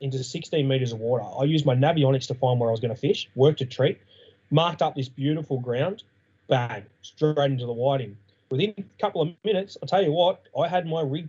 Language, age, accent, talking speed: English, 20-39, Australian, 230 wpm